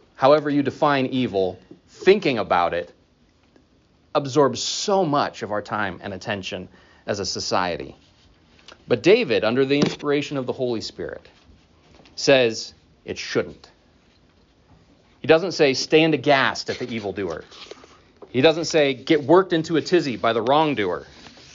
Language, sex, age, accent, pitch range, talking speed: English, male, 30-49, American, 105-145 Hz, 135 wpm